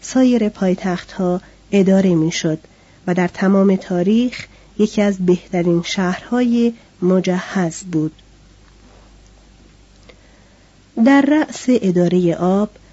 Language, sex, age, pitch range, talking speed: Persian, female, 40-59, 180-235 Hz, 85 wpm